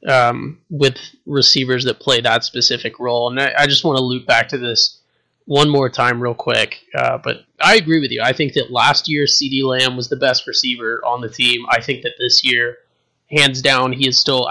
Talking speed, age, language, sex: 220 wpm, 20-39, English, male